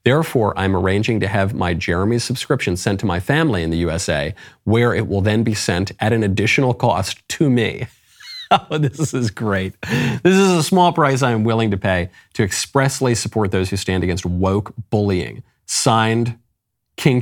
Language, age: English, 40-59